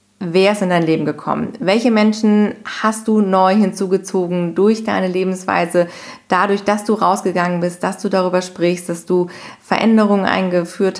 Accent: German